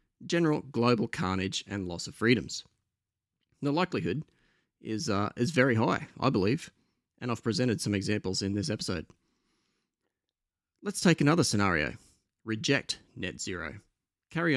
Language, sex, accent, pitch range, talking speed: English, male, Australian, 95-115 Hz, 130 wpm